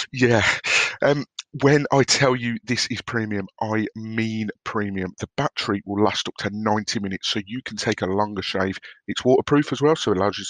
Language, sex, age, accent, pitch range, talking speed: English, male, 30-49, British, 105-135 Hz, 200 wpm